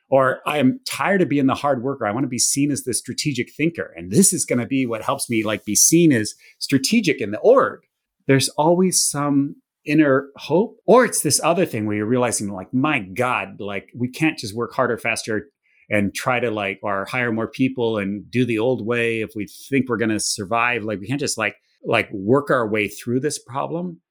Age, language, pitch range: 30-49, English, 100-140 Hz